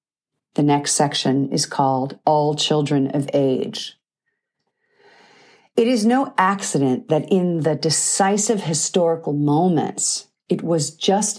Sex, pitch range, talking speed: female, 150-195 Hz, 115 wpm